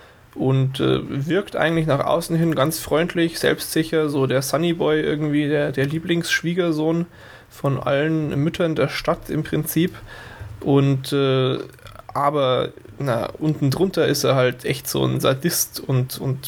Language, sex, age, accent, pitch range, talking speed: German, male, 10-29, German, 130-160 Hz, 140 wpm